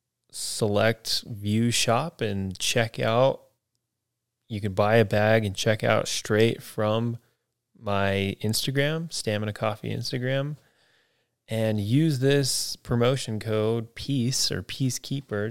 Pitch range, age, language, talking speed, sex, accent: 105-120 Hz, 20-39, English, 110 wpm, male, American